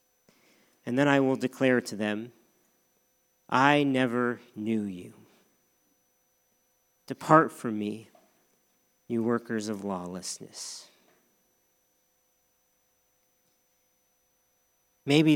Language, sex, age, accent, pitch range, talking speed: English, male, 40-59, American, 110-140 Hz, 75 wpm